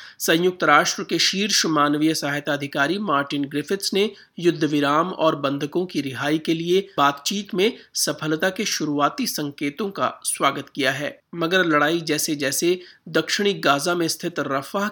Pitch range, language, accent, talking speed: 145-180 Hz, Hindi, native, 140 wpm